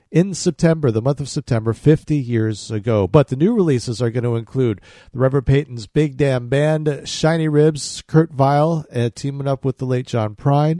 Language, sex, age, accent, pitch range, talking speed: English, male, 50-69, American, 115-150 Hz, 190 wpm